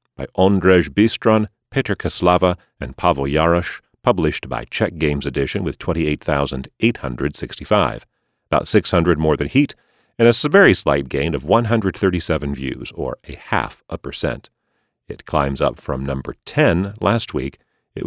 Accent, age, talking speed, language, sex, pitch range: American, 40-59, 140 wpm, English, male, 75-115 Hz